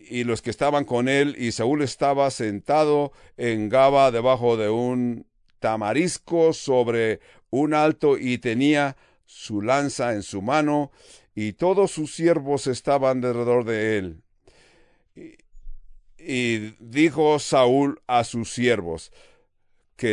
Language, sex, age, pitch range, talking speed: English, male, 60-79, 115-150 Hz, 125 wpm